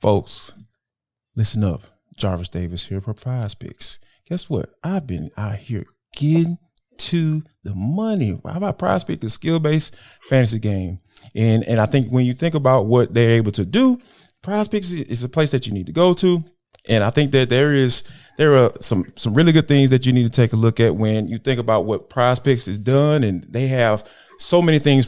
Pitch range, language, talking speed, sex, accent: 115-175 Hz, English, 200 wpm, male, American